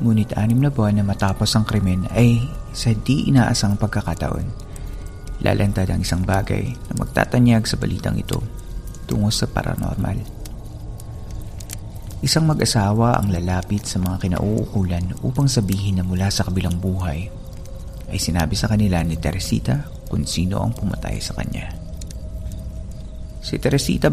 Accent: native